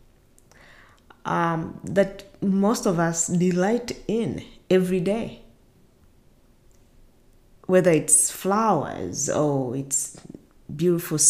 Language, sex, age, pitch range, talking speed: English, female, 20-39, 150-195 Hz, 80 wpm